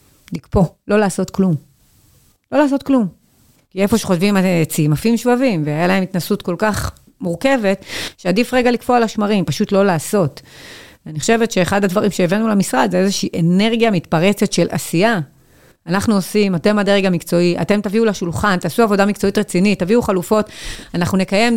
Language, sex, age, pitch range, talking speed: Hebrew, female, 30-49, 165-215 Hz, 155 wpm